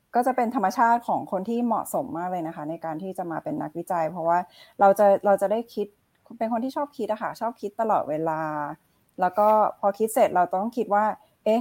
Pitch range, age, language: 170-210 Hz, 10-29, Thai